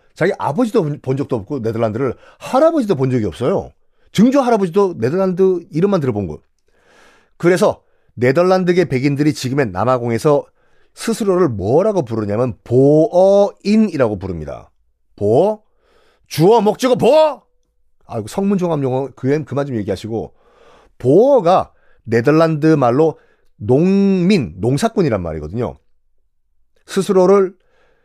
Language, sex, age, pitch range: Korean, male, 40-59, 115-195 Hz